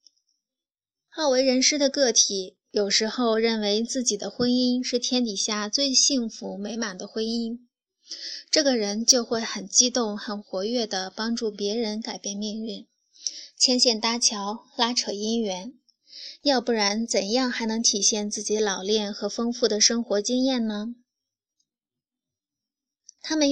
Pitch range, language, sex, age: 210-250 Hz, Chinese, female, 10-29